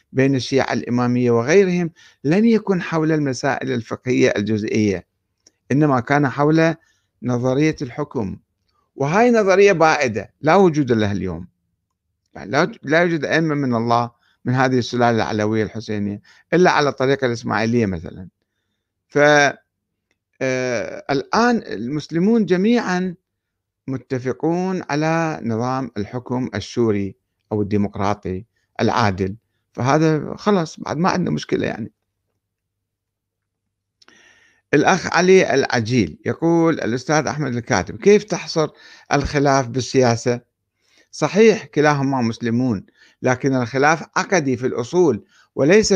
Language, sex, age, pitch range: Arabic, male, 60-79, 105-150 Hz